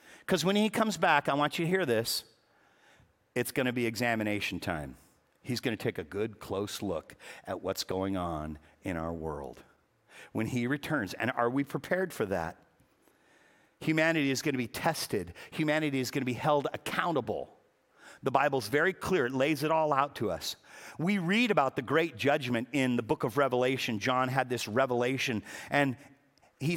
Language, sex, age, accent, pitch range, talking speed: English, male, 50-69, American, 120-180 Hz, 185 wpm